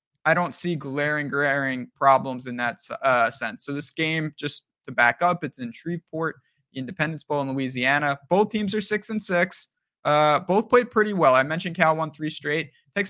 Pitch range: 140-175 Hz